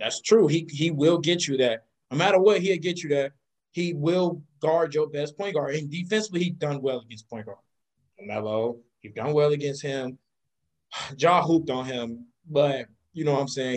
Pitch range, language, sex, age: 130-175 Hz, English, male, 20-39